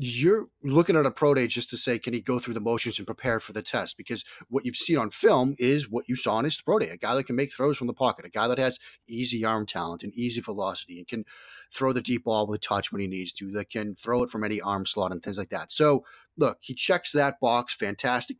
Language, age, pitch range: English, 30-49, 110-130 Hz